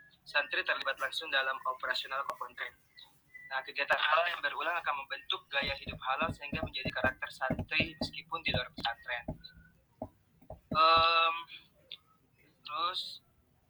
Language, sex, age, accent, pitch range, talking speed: Indonesian, male, 20-39, native, 140-165 Hz, 120 wpm